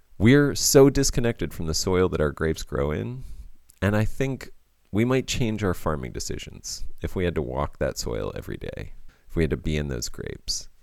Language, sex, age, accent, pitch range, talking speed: English, male, 30-49, American, 75-110 Hz, 205 wpm